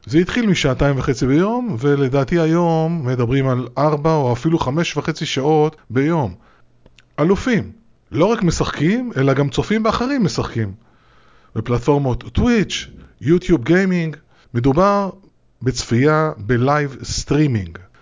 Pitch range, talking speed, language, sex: 130-175 Hz, 110 wpm, Hebrew, male